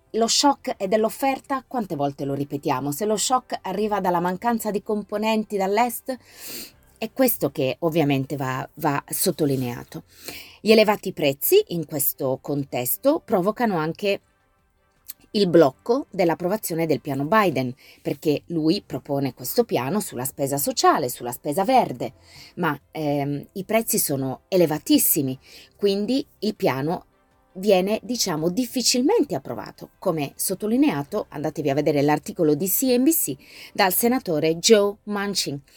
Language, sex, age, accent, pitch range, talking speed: Italian, female, 30-49, native, 150-220 Hz, 125 wpm